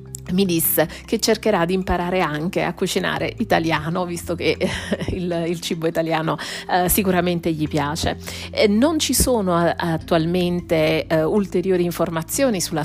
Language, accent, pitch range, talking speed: Italian, native, 160-190 Hz, 140 wpm